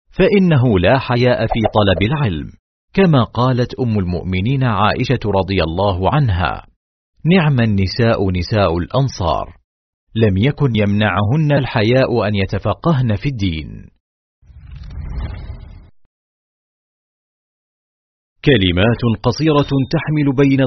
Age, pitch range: 40-59, 100-145 Hz